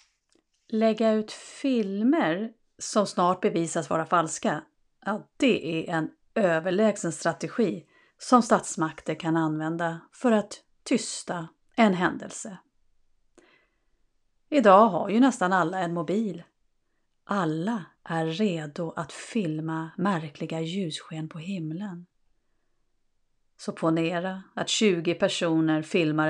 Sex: female